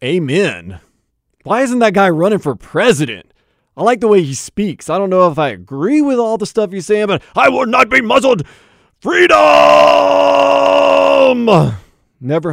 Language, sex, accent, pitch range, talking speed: English, male, American, 120-180 Hz, 165 wpm